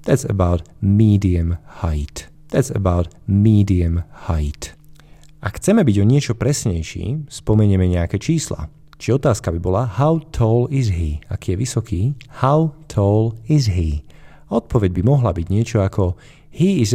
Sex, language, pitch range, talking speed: male, Slovak, 90-130 Hz, 140 wpm